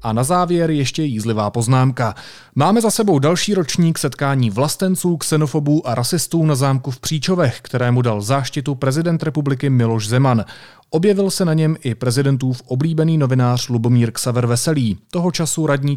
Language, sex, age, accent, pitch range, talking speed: Czech, male, 30-49, native, 120-155 Hz, 155 wpm